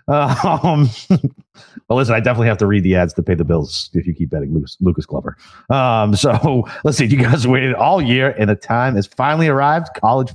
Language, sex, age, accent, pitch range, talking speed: English, male, 30-49, American, 95-130 Hz, 220 wpm